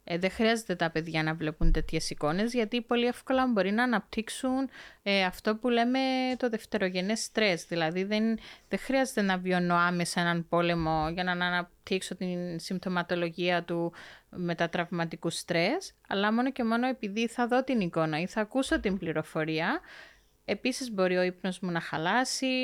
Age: 20-39